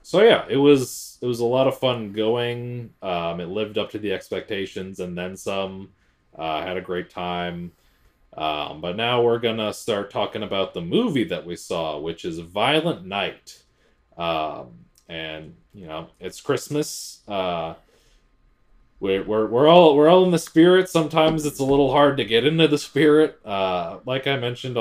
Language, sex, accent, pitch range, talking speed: English, male, American, 90-140 Hz, 175 wpm